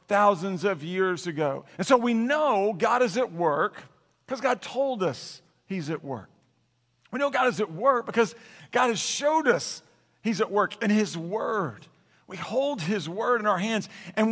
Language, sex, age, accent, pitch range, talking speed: English, male, 50-69, American, 170-250 Hz, 185 wpm